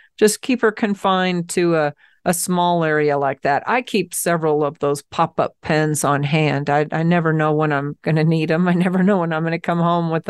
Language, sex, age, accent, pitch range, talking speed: English, female, 40-59, American, 155-190 Hz, 235 wpm